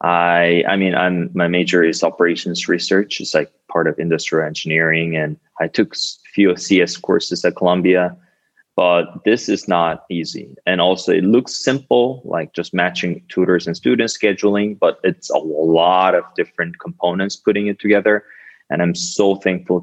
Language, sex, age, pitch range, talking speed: English, male, 20-39, 80-90 Hz, 165 wpm